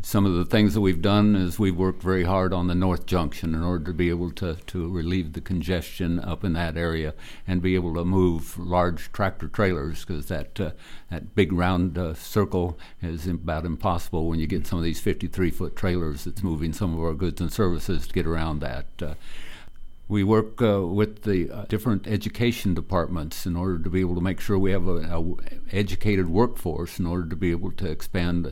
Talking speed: 210 wpm